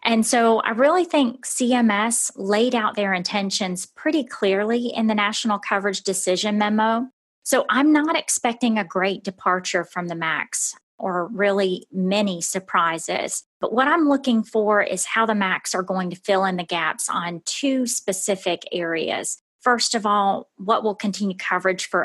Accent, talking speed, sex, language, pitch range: American, 165 wpm, female, English, 185-230 Hz